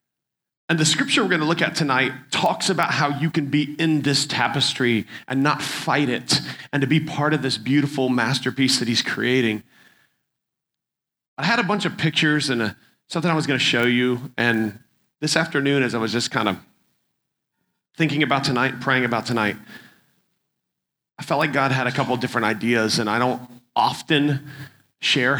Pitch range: 125-145 Hz